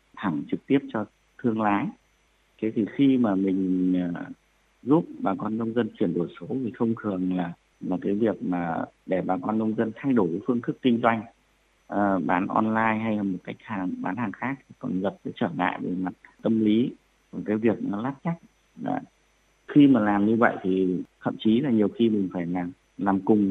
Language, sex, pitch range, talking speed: Vietnamese, male, 100-125 Hz, 210 wpm